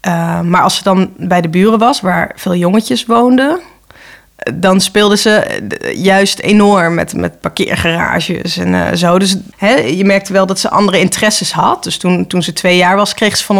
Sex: female